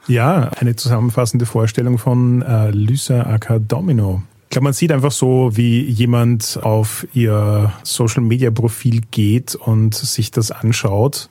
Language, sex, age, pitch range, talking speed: German, male, 30-49, 110-125 Hz, 135 wpm